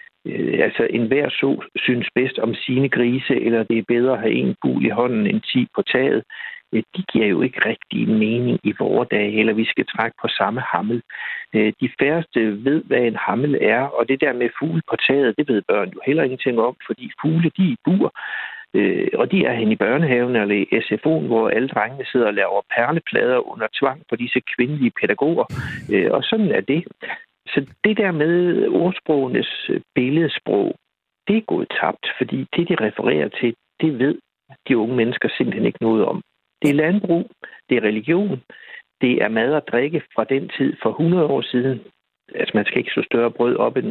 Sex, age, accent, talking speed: male, 60-79, native, 195 wpm